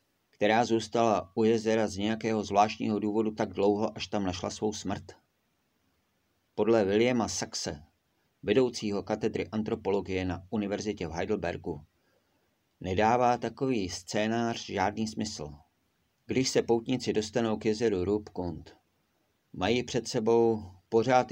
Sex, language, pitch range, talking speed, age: male, Czech, 95-115 Hz, 115 wpm, 50-69